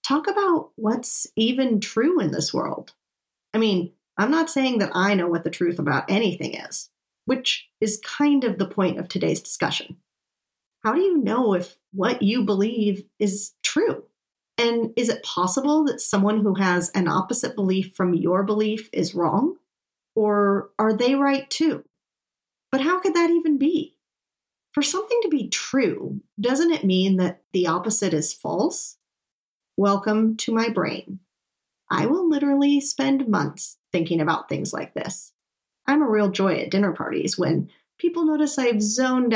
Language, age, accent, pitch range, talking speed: English, 40-59, American, 185-270 Hz, 165 wpm